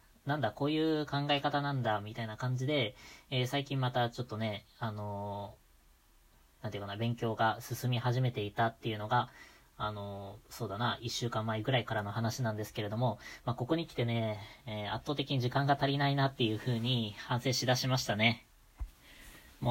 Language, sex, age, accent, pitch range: Japanese, female, 20-39, native, 110-140 Hz